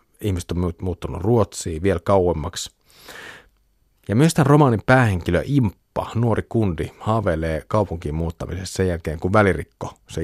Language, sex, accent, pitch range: Finnish, male, native, 85-110 Hz